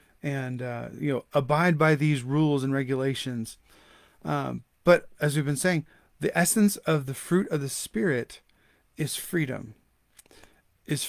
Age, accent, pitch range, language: 30-49, American, 145-195 Hz, English